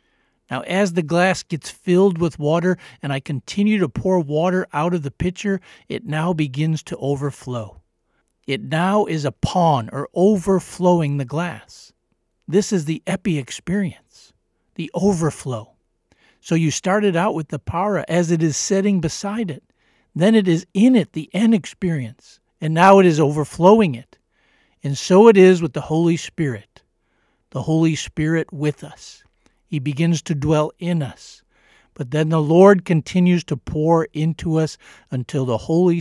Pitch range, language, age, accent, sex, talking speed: 140-180 Hz, English, 50-69, American, male, 160 wpm